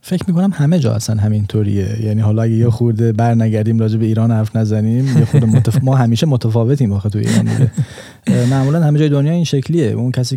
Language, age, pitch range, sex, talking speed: Persian, 20-39, 110-130 Hz, male, 190 wpm